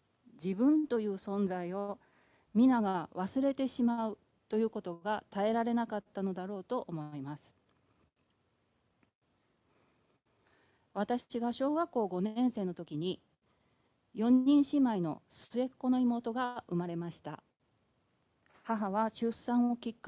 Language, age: Japanese, 40-59